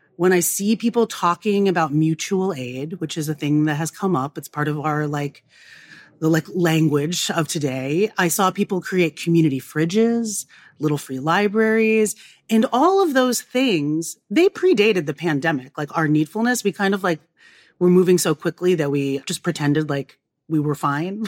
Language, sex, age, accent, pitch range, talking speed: English, female, 30-49, American, 150-195 Hz, 180 wpm